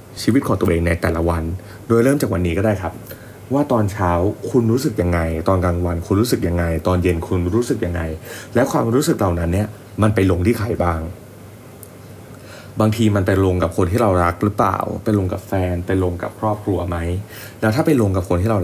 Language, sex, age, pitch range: Thai, male, 20-39, 90-110 Hz